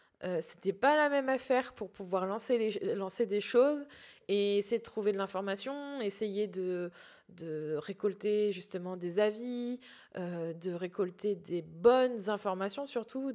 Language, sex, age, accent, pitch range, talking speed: French, female, 20-39, French, 195-245 Hz, 155 wpm